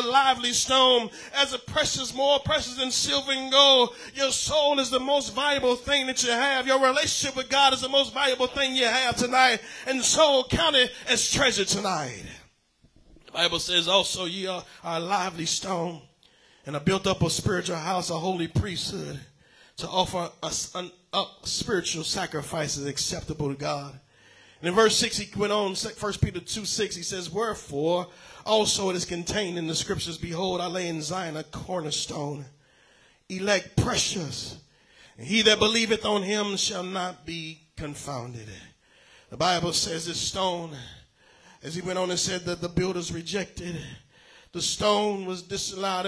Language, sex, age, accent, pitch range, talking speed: English, male, 40-59, American, 170-225 Hz, 165 wpm